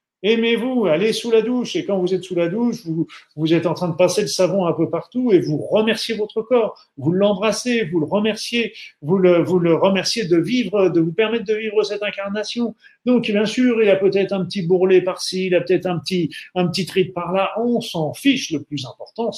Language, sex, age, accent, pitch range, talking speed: French, male, 50-69, French, 150-205 Hz, 230 wpm